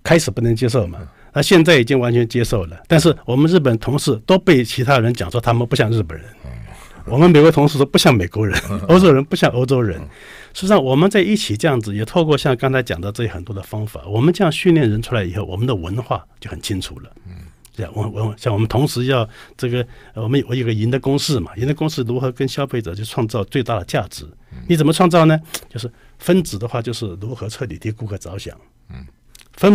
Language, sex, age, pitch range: Chinese, male, 60-79, 110-160 Hz